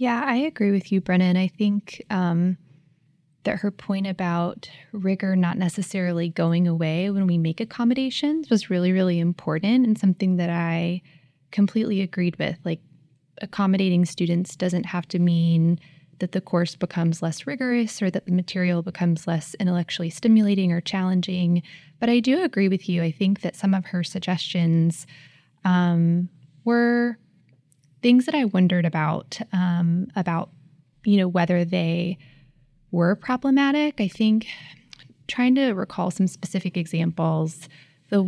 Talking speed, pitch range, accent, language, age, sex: 145 wpm, 170-200 Hz, American, English, 20-39, female